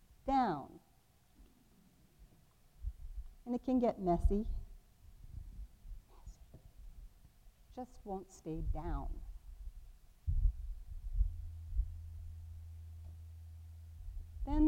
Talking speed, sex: 45 wpm, female